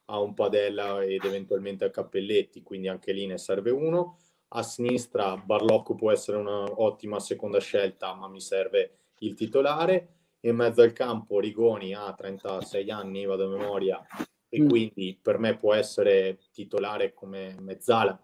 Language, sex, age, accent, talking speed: Italian, male, 20-39, native, 155 wpm